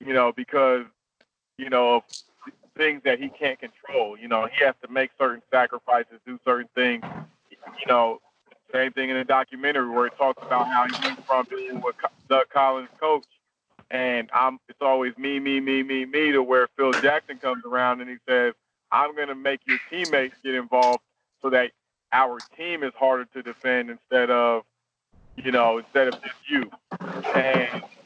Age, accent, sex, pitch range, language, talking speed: 40-59, American, male, 125-140 Hz, English, 180 wpm